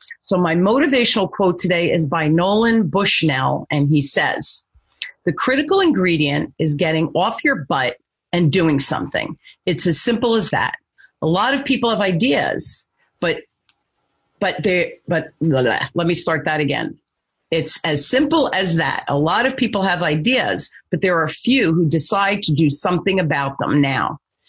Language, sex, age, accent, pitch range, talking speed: English, female, 40-59, American, 160-210 Hz, 170 wpm